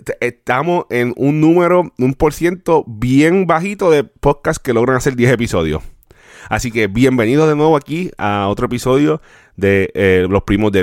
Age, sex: 30-49, male